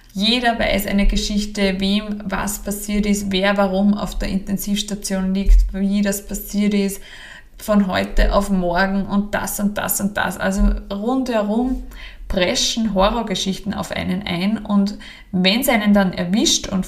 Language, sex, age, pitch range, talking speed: German, female, 20-39, 185-205 Hz, 150 wpm